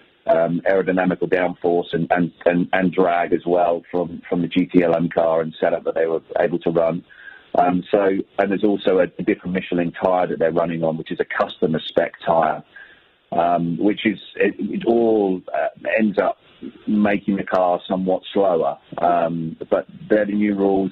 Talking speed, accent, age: 180 wpm, British, 40-59